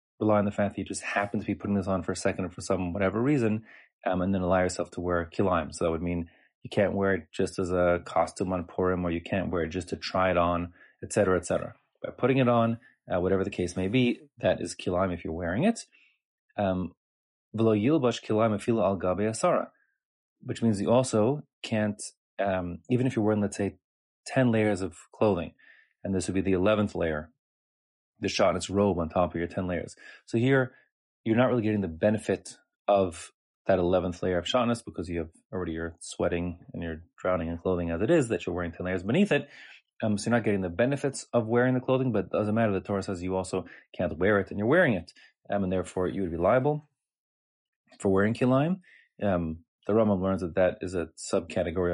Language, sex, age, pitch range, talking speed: English, male, 30-49, 90-115 Hz, 220 wpm